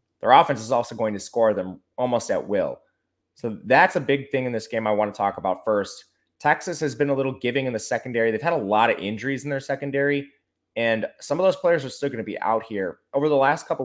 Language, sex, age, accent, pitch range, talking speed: English, male, 20-39, American, 105-135 Hz, 255 wpm